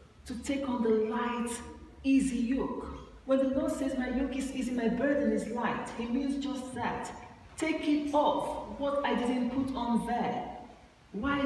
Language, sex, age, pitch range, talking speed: English, female, 40-59, 180-250 Hz, 175 wpm